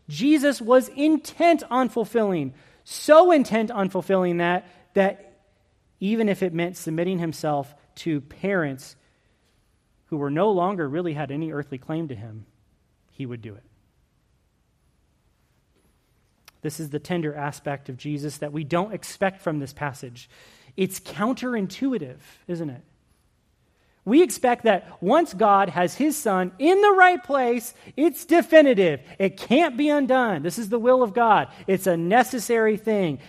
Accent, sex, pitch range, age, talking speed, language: American, male, 140-215 Hz, 30-49, 145 wpm, English